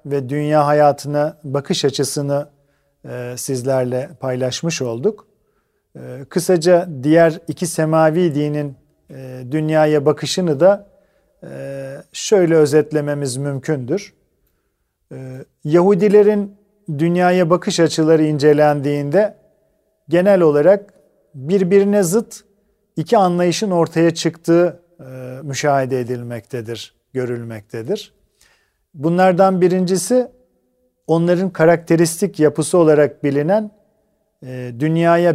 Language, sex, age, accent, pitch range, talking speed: Turkish, male, 40-59, native, 140-180 Hz, 85 wpm